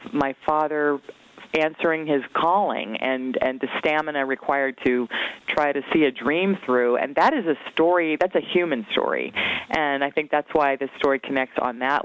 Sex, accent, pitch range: female, American, 140-180 Hz